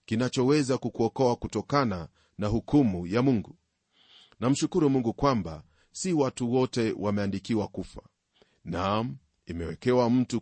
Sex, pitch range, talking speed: male, 100-125 Hz, 105 wpm